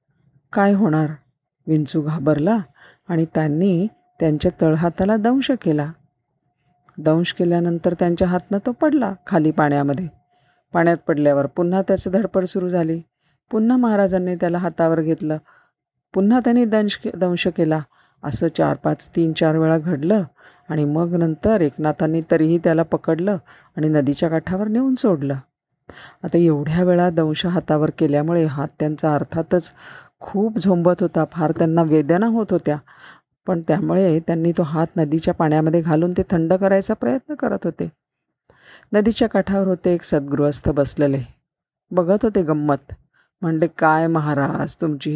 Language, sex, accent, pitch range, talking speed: Marathi, female, native, 150-185 Hz, 130 wpm